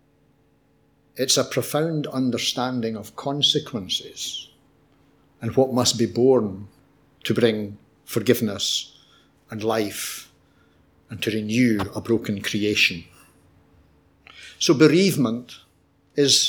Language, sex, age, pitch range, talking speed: English, male, 60-79, 115-145 Hz, 90 wpm